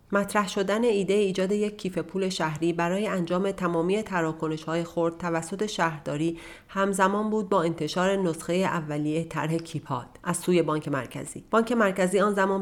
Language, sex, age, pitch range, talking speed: Persian, female, 40-59, 165-200 Hz, 145 wpm